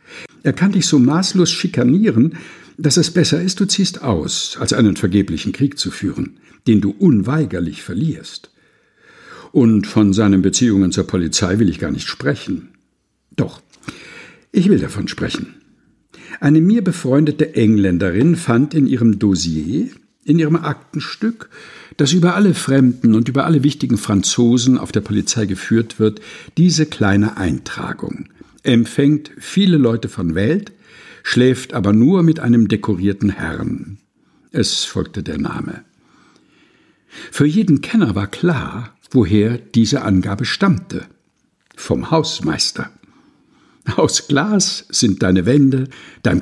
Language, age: German, 60-79